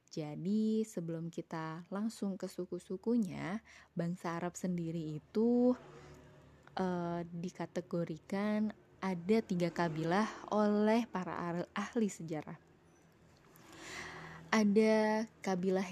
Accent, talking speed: native, 80 wpm